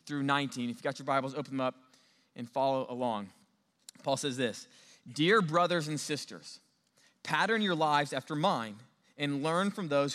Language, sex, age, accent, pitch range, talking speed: English, male, 20-39, American, 130-155 Hz, 165 wpm